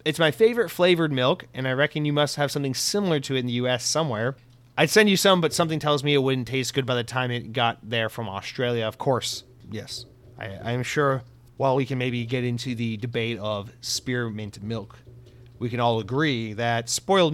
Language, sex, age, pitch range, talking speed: English, male, 30-49, 120-155 Hz, 210 wpm